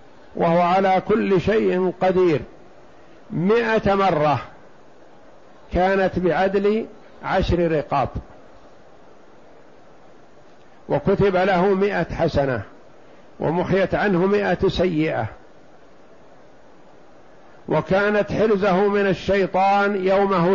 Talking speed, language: 70 wpm, Arabic